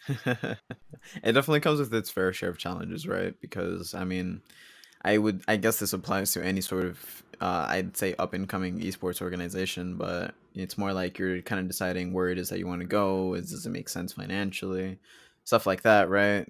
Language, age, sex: English, 20-39, male